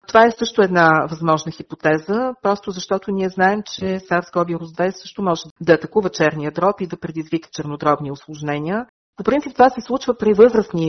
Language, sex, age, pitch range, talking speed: Bulgarian, female, 50-69, 160-200 Hz, 170 wpm